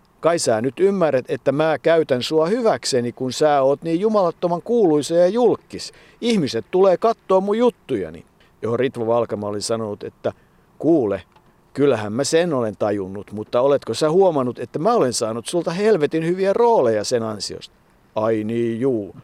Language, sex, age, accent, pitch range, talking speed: Finnish, male, 50-69, native, 115-155 Hz, 160 wpm